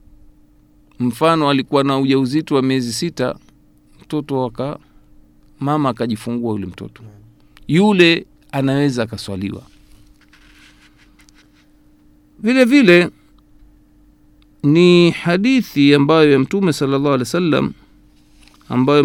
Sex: male